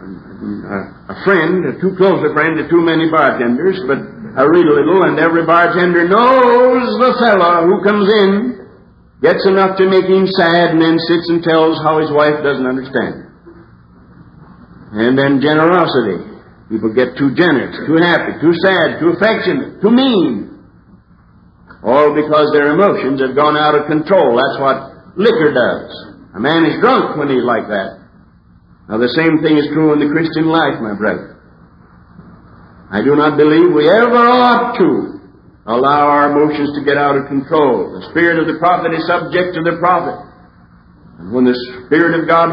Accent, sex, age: American, male, 60-79